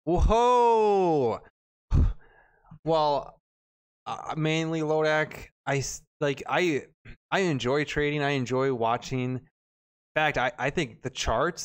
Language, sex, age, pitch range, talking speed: English, male, 20-39, 115-145 Hz, 110 wpm